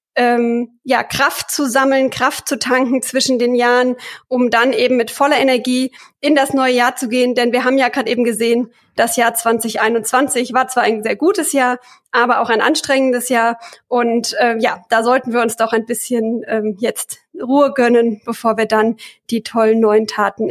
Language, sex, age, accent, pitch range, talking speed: German, female, 20-39, German, 235-265 Hz, 190 wpm